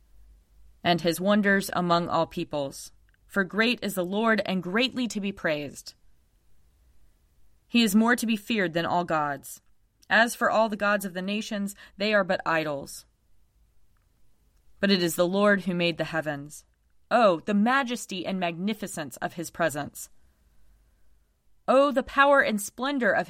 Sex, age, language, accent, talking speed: female, 20-39, English, American, 155 wpm